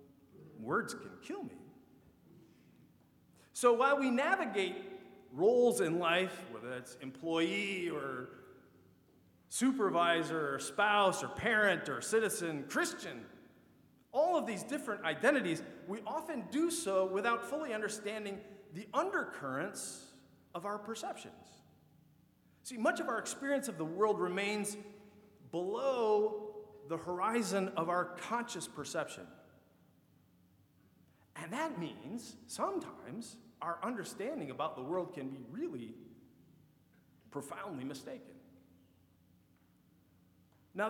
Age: 40-59